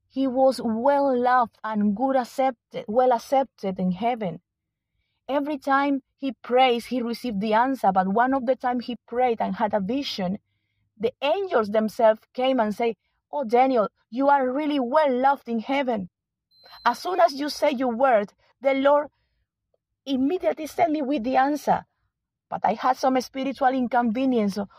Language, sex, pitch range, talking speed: English, female, 195-260 Hz, 160 wpm